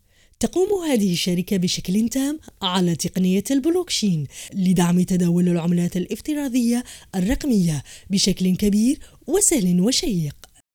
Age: 20-39